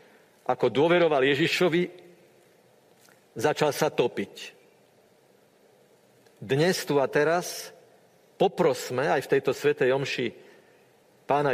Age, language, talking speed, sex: 50-69, Slovak, 90 wpm, male